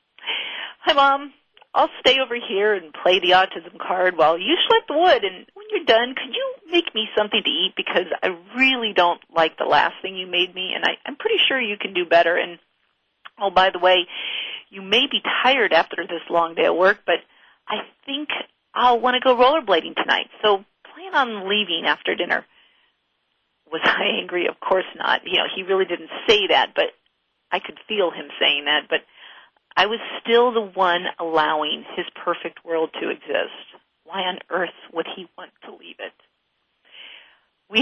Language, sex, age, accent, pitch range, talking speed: English, female, 40-59, American, 175-260 Hz, 185 wpm